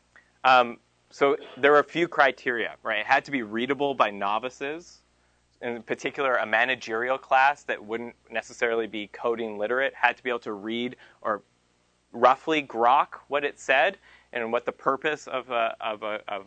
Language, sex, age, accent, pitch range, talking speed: English, male, 20-39, American, 105-135 Hz, 155 wpm